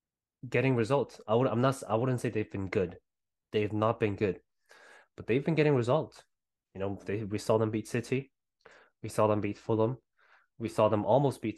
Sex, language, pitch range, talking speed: male, English, 105-125 Hz, 200 wpm